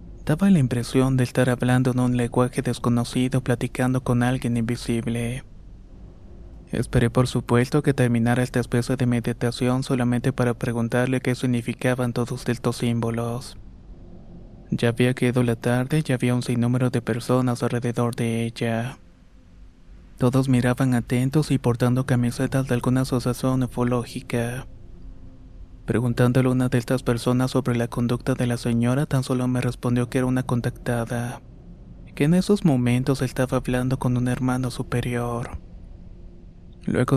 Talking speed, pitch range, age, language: 140 wpm, 120-125 Hz, 20-39, Spanish